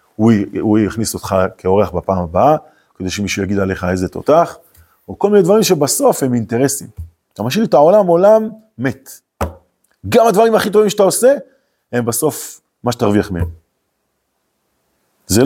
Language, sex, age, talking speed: Hebrew, male, 30-49, 150 wpm